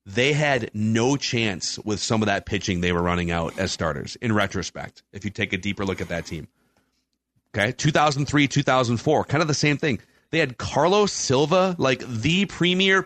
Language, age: English, 30-49